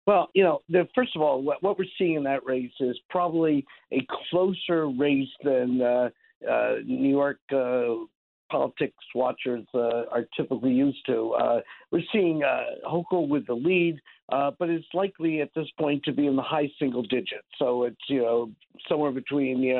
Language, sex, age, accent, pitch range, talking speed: English, male, 50-69, American, 125-160 Hz, 180 wpm